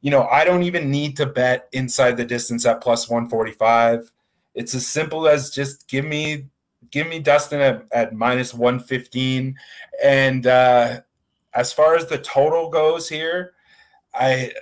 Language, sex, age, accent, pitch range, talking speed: English, male, 30-49, American, 120-145 Hz, 165 wpm